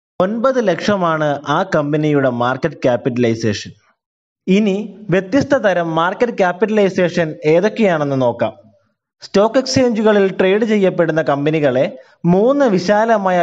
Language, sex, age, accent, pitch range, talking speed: Malayalam, male, 20-39, native, 145-195 Hz, 90 wpm